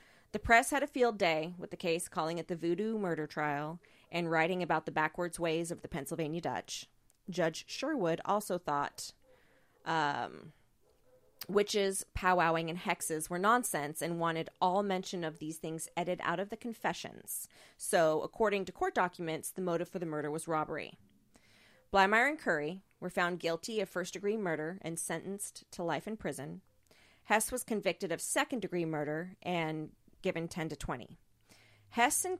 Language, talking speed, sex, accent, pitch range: English, 165 wpm, female, American, 160-205 Hz